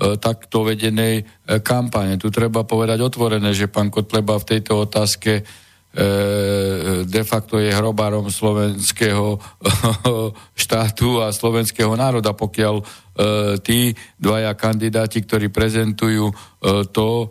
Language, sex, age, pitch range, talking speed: Slovak, male, 50-69, 105-115 Hz, 100 wpm